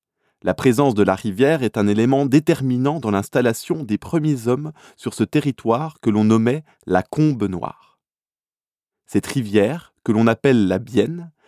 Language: French